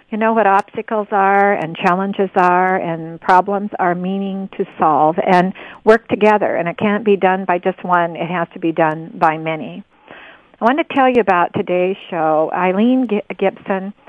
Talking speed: 180 wpm